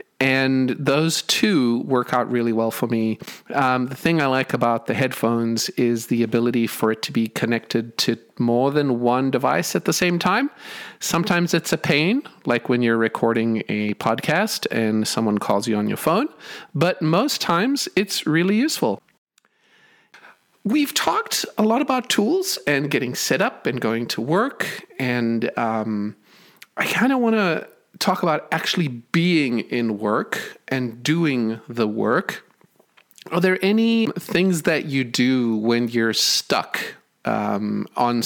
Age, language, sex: 40-59, English, male